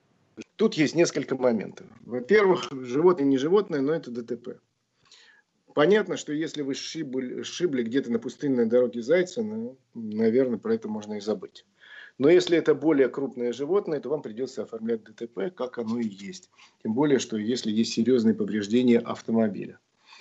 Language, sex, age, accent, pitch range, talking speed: Russian, male, 40-59, native, 120-165 Hz, 150 wpm